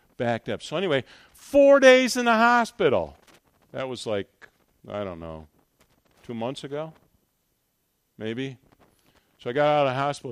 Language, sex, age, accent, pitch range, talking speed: English, male, 50-69, American, 105-140 Hz, 150 wpm